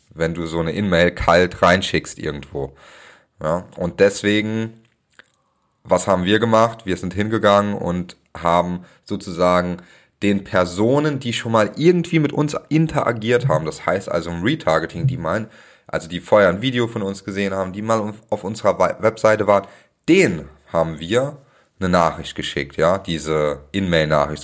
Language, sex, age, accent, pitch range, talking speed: German, male, 30-49, German, 90-110 Hz, 150 wpm